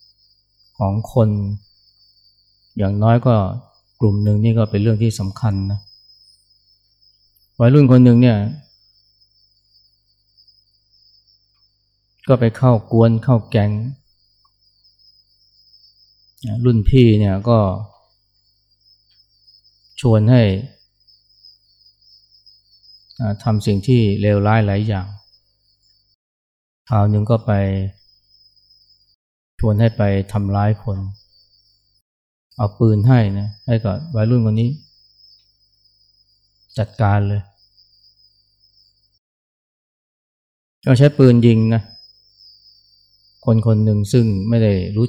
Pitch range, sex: 100-110 Hz, male